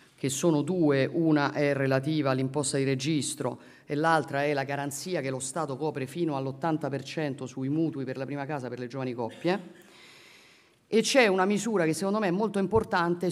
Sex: female